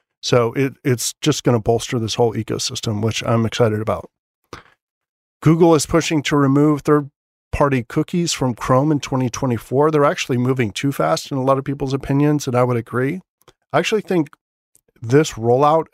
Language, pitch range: English, 115-140 Hz